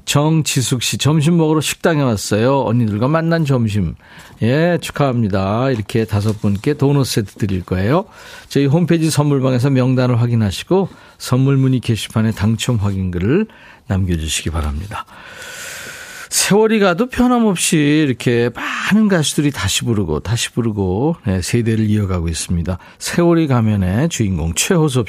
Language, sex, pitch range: Korean, male, 105-155 Hz